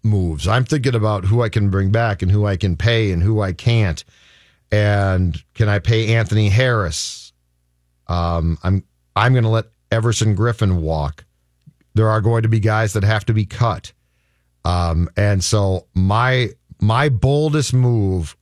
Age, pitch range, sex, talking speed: 50-69, 85-115 Hz, male, 165 wpm